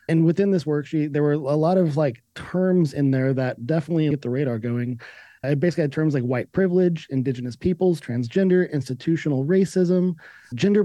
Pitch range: 135-170 Hz